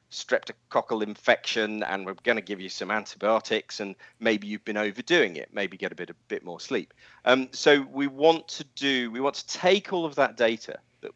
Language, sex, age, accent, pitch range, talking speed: English, male, 40-59, British, 100-125 Hz, 210 wpm